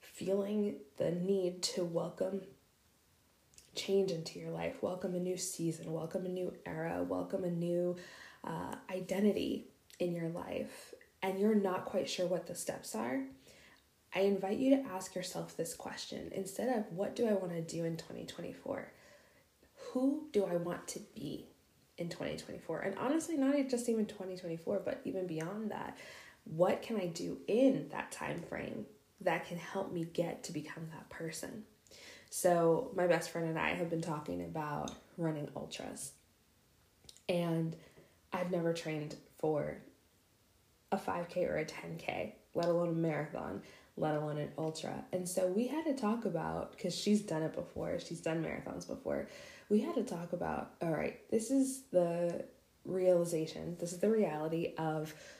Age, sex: 20-39, female